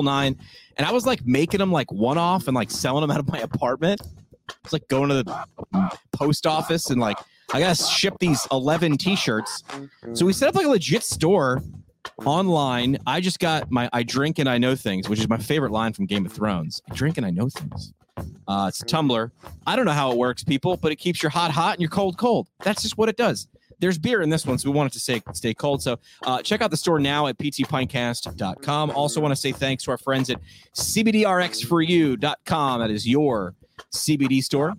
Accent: American